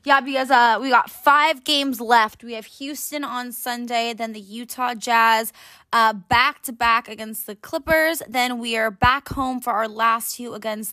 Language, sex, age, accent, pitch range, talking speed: English, female, 20-39, American, 220-260 Hz, 175 wpm